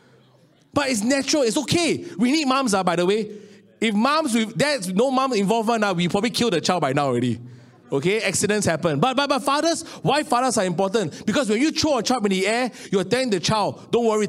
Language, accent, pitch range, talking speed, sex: English, Malaysian, 175-235 Hz, 230 wpm, male